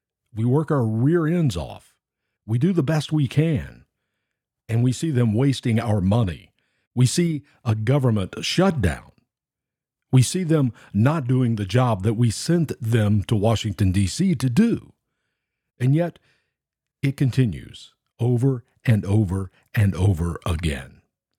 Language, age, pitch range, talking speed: English, 50-69, 100-135 Hz, 140 wpm